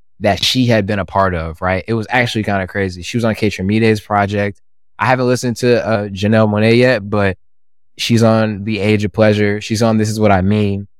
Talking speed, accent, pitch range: 230 wpm, American, 85-110 Hz